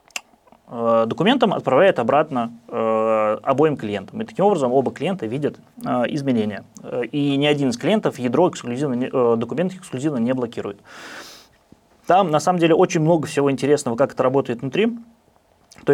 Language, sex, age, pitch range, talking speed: Russian, male, 20-39, 120-160 Hz, 150 wpm